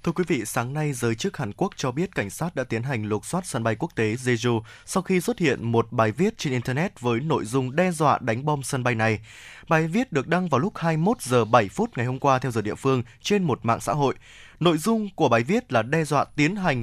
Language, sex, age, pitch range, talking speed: Vietnamese, male, 20-39, 125-170 Hz, 265 wpm